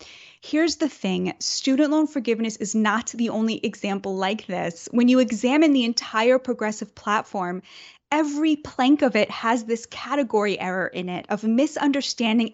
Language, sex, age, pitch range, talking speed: English, female, 20-39, 195-250 Hz, 155 wpm